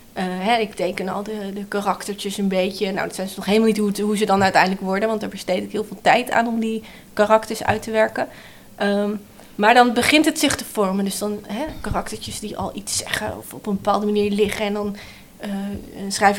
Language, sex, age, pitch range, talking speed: Dutch, female, 20-39, 200-235 Hz, 220 wpm